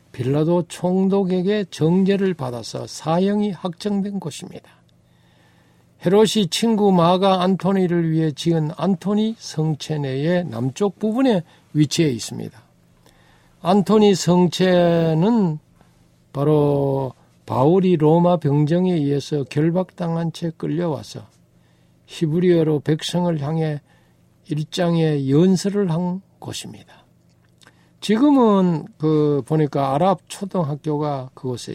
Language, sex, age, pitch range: Korean, male, 60-79, 120-180 Hz